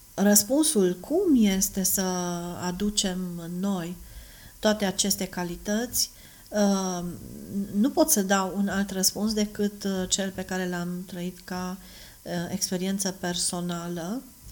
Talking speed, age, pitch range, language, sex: 105 wpm, 40-59, 175-205 Hz, Romanian, female